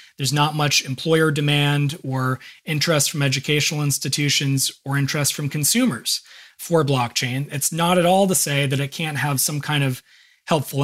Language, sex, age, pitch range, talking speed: English, male, 30-49, 140-170 Hz, 165 wpm